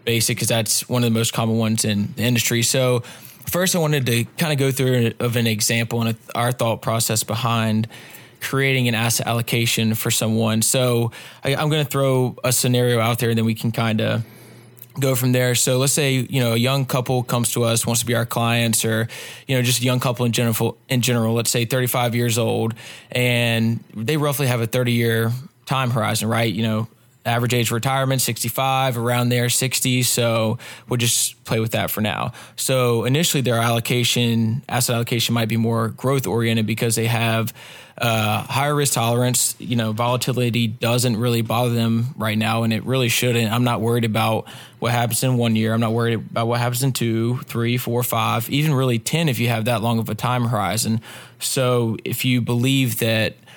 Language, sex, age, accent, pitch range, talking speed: English, male, 20-39, American, 115-125 Hz, 205 wpm